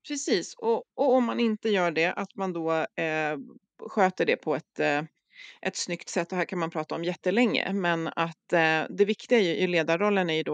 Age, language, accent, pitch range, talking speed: 30-49, Swedish, native, 160-215 Hz, 210 wpm